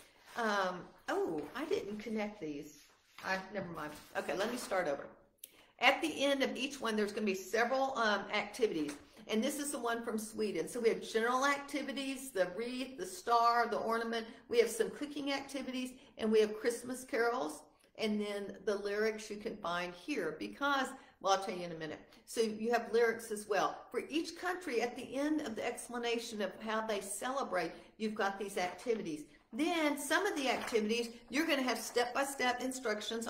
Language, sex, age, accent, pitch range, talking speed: English, female, 50-69, American, 215-270 Hz, 185 wpm